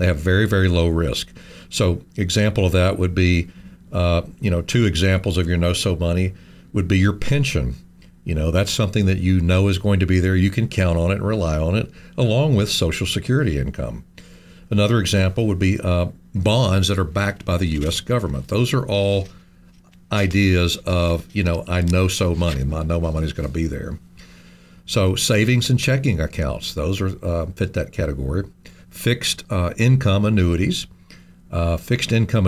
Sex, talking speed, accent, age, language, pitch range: male, 185 wpm, American, 60-79, English, 90-105 Hz